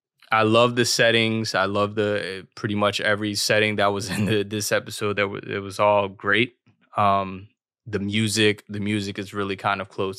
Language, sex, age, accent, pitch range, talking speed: English, male, 20-39, American, 100-105 Hz, 195 wpm